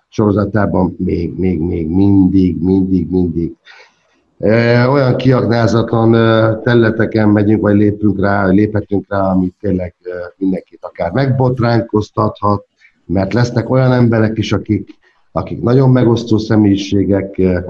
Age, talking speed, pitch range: 50-69, 110 wpm, 95-115 Hz